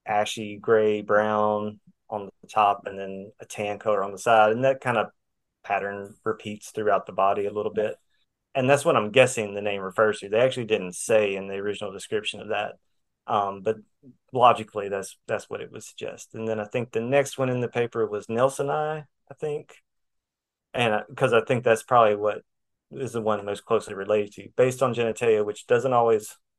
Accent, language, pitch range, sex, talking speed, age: American, English, 105-120 Hz, male, 200 wpm, 30-49